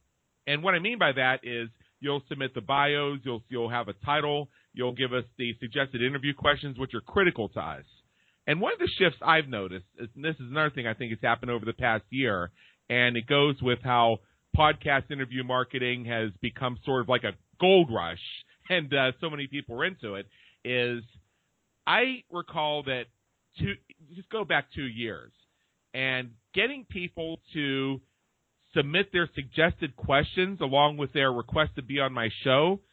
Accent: American